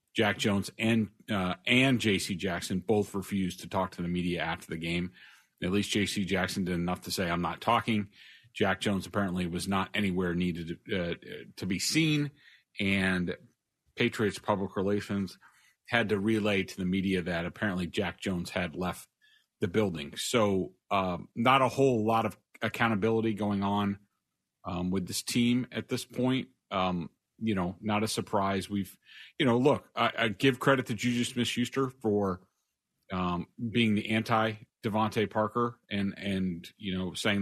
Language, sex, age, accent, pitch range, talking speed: English, male, 40-59, American, 95-110 Hz, 165 wpm